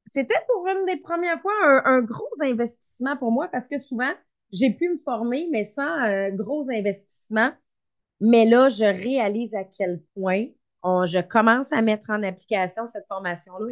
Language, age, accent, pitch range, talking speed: French, 30-49, Canadian, 210-275 Hz, 180 wpm